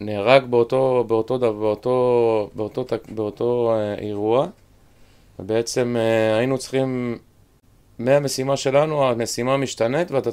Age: 20-39